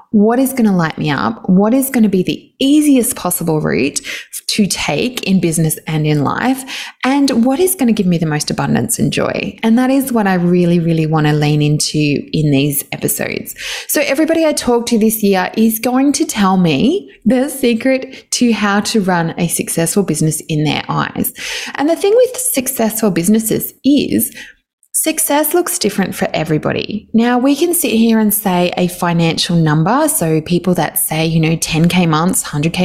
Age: 20-39